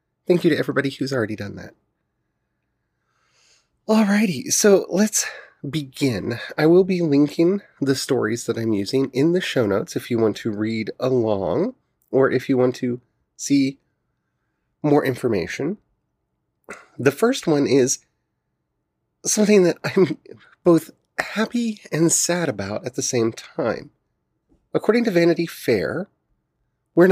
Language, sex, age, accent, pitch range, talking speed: English, male, 30-49, American, 130-180 Hz, 135 wpm